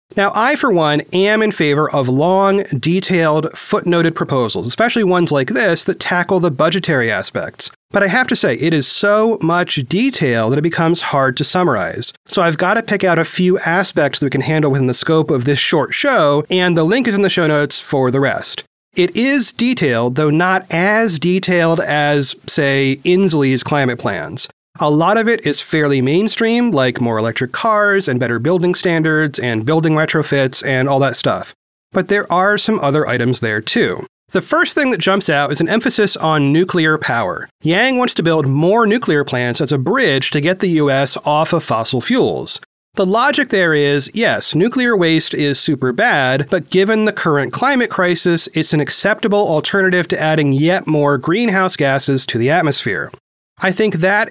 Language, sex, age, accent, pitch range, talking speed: English, male, 30-49, American, 145-195 Hz, 190 wpm